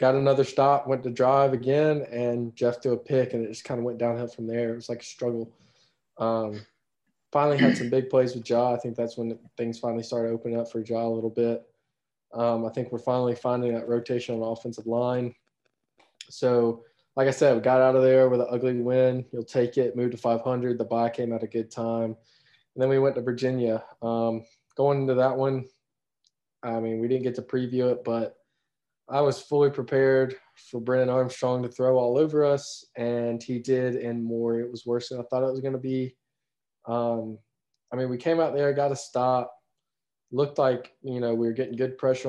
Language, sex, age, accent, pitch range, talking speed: English, male, 20-39, American, 120-135 Hz, 215 wpm